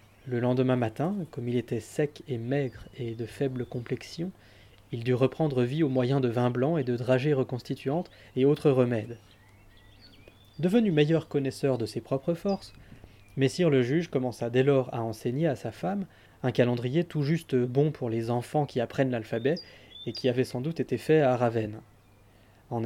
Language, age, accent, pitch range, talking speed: French, 20-39, French, 120-145 Hz, 180 wpm